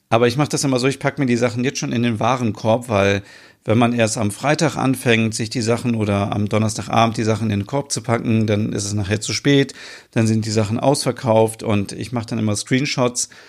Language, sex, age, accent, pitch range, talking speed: German, male, 40-59, German, 105-120 Hz, 240 wpm